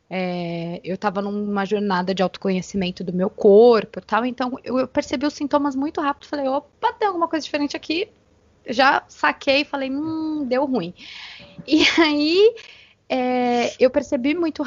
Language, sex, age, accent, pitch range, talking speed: Portuguese, female, 20-39, Brazilian, 225-300 Hz, 150 wpm